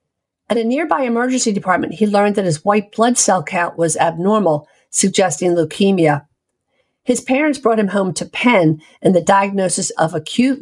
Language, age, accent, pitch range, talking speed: English, 50-69, American, 175-225 Hz, 165 wpm